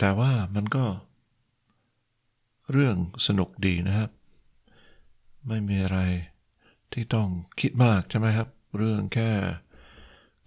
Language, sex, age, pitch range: Thai, male, 60-79, 95-110 Hz